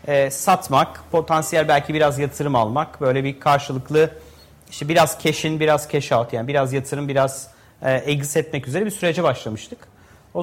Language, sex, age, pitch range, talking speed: Turkish, male, 40-59, 140-185 Hz, 155 wpm